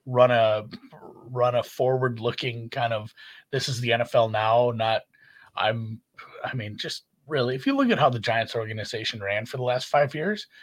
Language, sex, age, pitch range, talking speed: English, male, 30-49, 110-135 Hz, 185 wpm